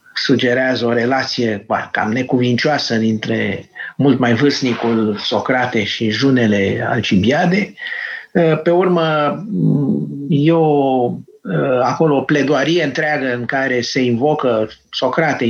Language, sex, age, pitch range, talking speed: Romanian, male, 50-69, 120-155 Hz, 95 wpm